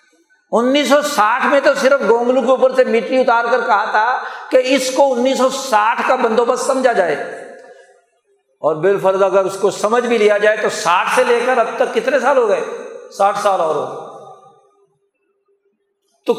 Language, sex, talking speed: Urdu, male, 180 wpm